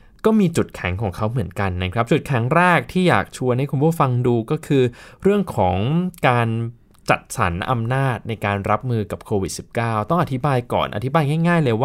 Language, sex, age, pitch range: Thai, male, 20-39, 110-145 Hz